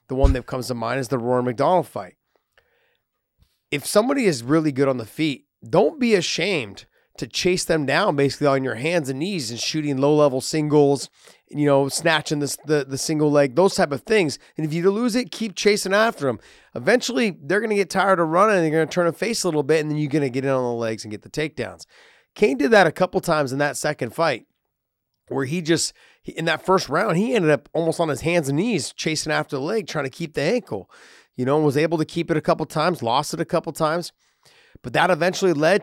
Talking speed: 245 wpm